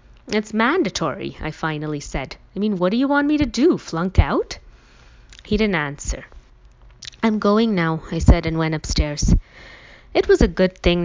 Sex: female